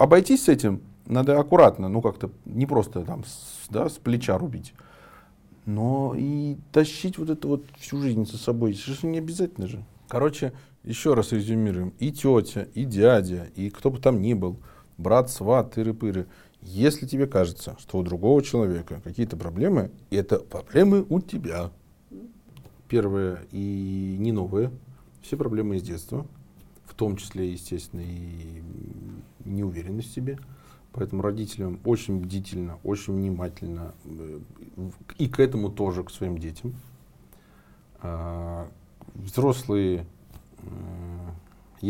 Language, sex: Russian, male